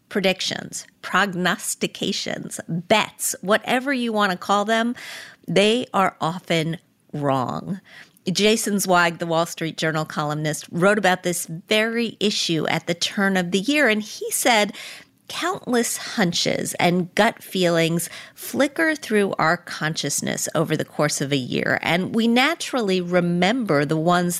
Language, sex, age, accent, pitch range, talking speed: English, female, 40-59, American, 175-235 Hz, 135 wpm